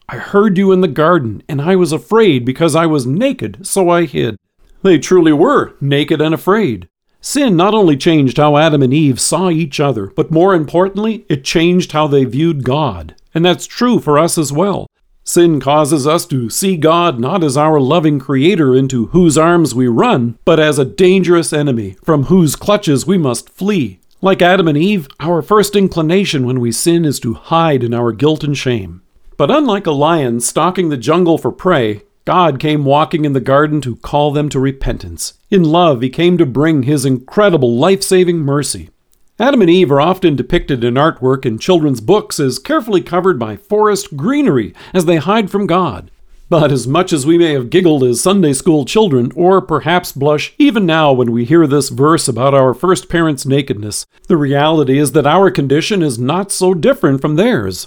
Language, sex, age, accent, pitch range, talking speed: English, male, 50-69, American, 135-180 Hz, 195 wpm